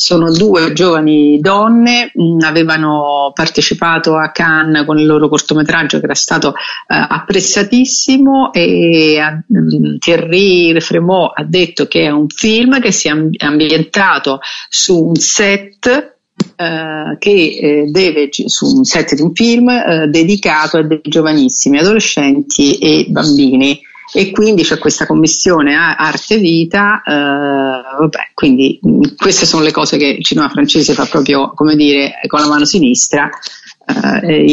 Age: 50-69